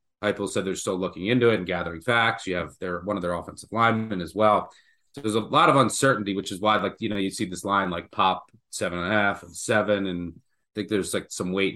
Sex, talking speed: male, 260 wpm